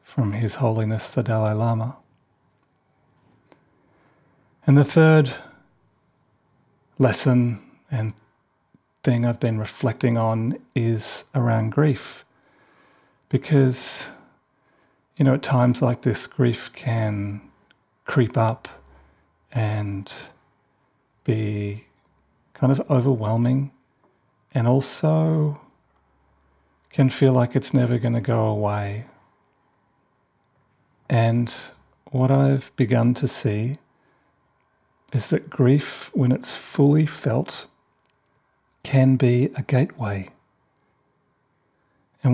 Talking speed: 90 wpm